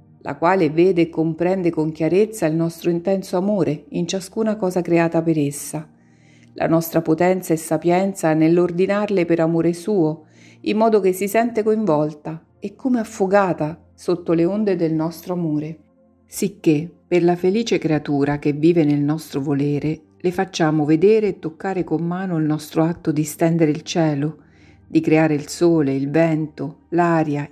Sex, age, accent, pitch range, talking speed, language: female, 50-69, native, 155-180 Hz, 155 wpm, Italian